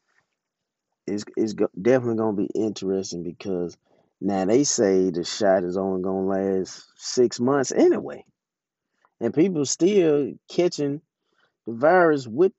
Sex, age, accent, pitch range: male, 30-49, American, 95-130 Hz